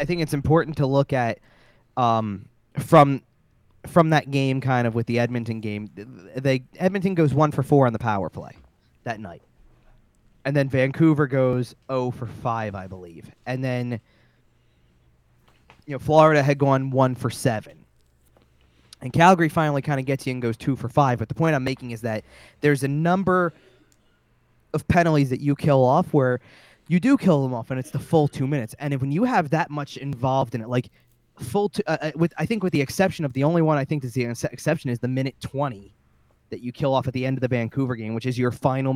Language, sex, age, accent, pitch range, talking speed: English, male, 20-39, American, 120-155 Hz, 215 wpm